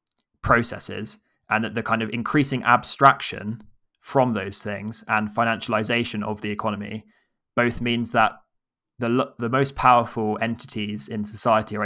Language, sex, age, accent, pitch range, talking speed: English, male, 20-39, British, 105-115 Hz, 135 wpm